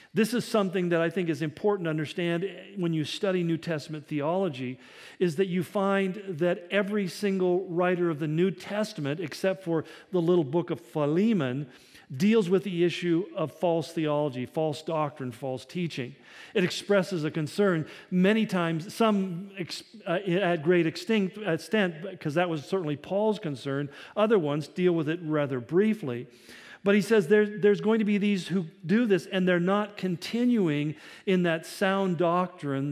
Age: 50-69